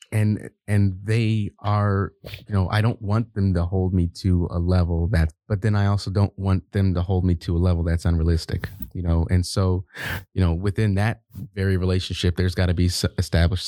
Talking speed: 205 wpm